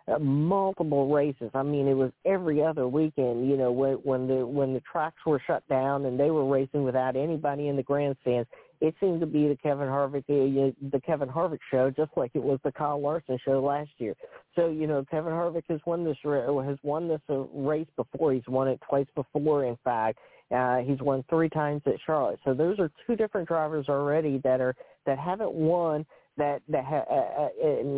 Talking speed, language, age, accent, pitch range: 200 wpm, English, 40-59, American, 130-155 Hz